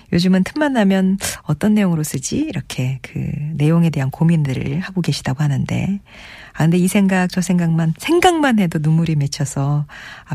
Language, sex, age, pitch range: Korean, female, 40-59, 150-210 Hz